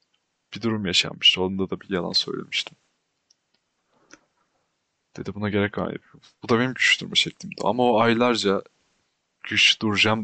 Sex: male